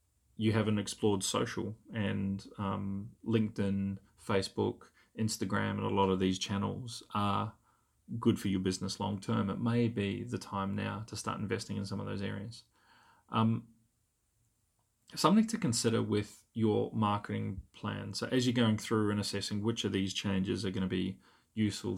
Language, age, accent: English, 30-49, Australian